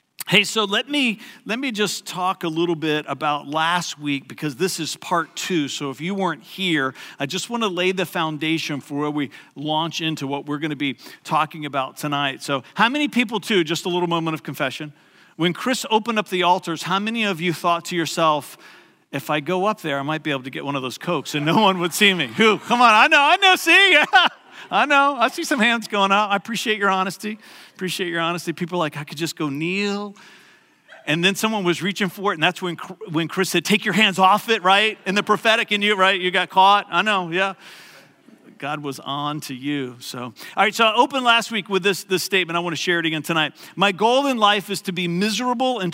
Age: 40-59